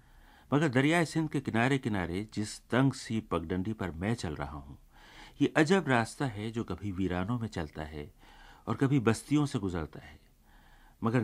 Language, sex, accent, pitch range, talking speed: Hindi, male, native, 90-130 Hz, 170 wpm